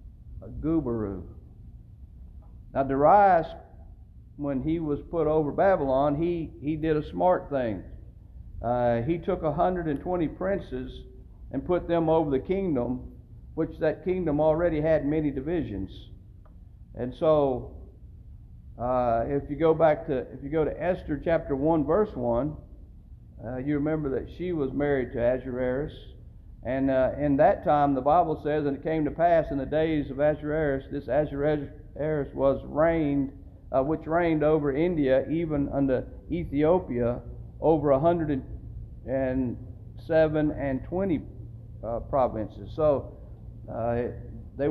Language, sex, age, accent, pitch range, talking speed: English, male, 50-69, American, 125-160 Hz, 135 wpm